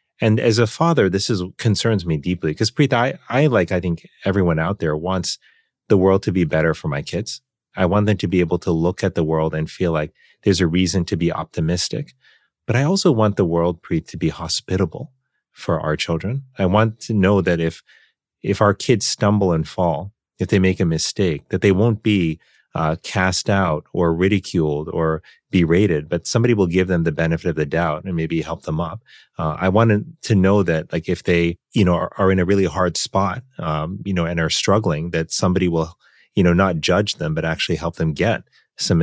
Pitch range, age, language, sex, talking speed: 85-105 Hz, 30-49, English, male, 220 wpm